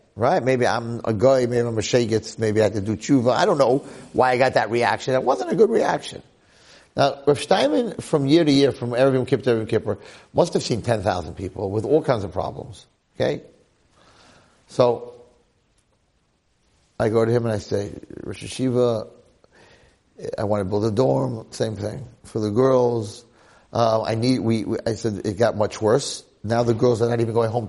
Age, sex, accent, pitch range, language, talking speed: 50-69, male, American, 110-135 Hz, English, 200 wpm